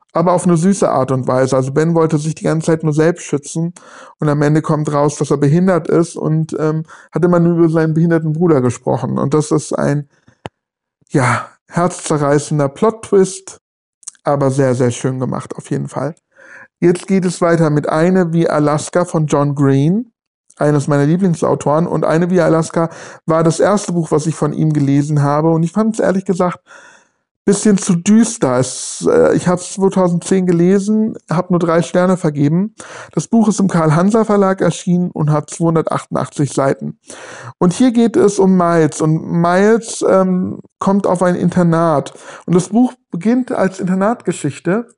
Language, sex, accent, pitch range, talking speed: German, male, German, 155-190 Hz, 170 wpm